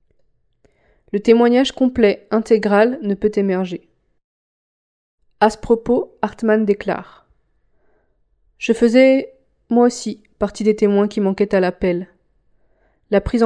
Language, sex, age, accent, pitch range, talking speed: French, female, 20-39, French, 200-225 Hz, 110 wpm